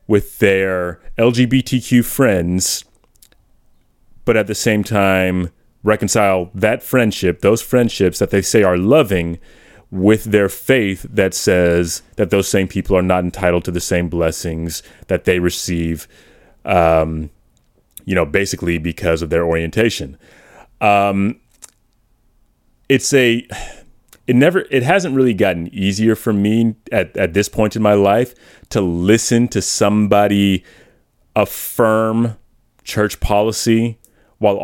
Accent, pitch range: American, 90-115 Hz